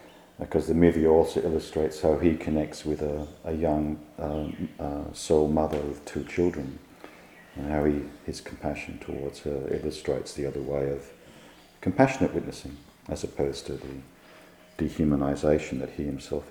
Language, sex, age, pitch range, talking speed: English, male, 50-69, 75-90 Hz, 145 wpm